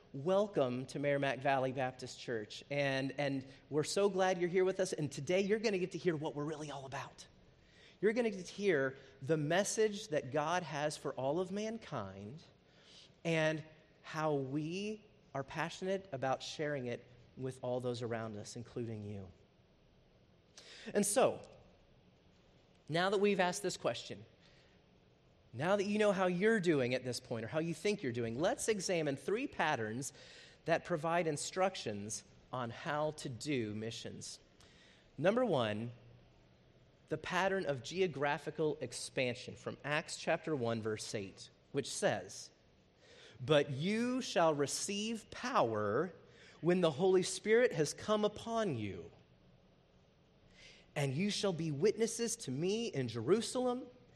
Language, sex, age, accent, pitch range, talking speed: English, male, 30-49, American, 130-190 Hz, 145 wpm